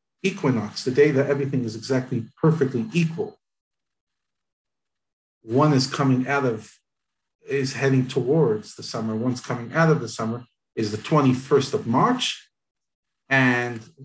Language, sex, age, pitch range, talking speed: English, male, 50-69, 125-170 Hz, 130 wpm